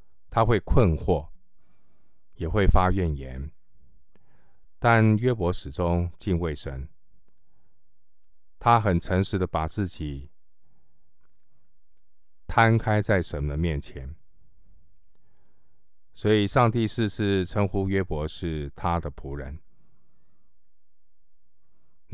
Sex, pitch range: male, 80-100 Hz